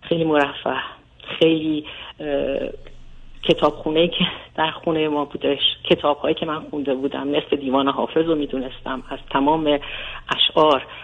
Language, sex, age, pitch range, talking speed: Persian, female, 40-59, 135-160 Hz, 125 wpm